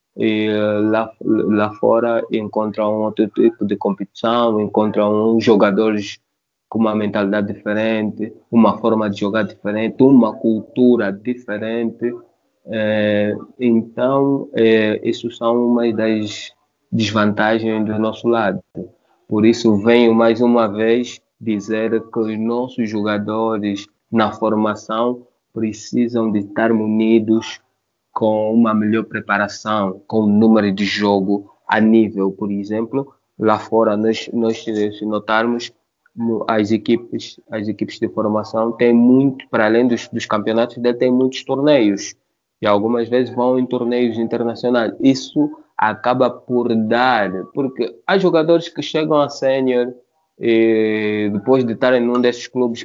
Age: 20-39